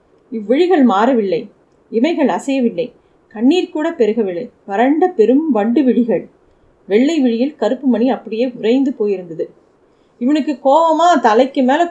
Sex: female